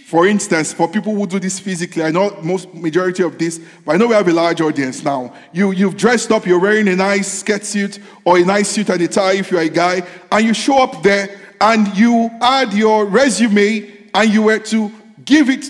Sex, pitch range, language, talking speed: male, 190-225 Hz, English, 235 wpm